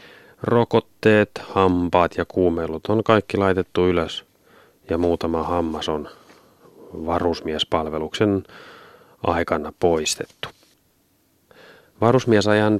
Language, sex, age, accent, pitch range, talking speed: Finnish, male, 30-49, native, 85-95 Hz, 75 wpm